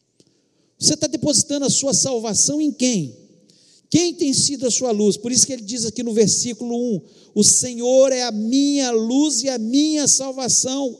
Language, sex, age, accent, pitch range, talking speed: Portuguese, male, 50-69, Brazilian, 240-300 Hz, 180 wpm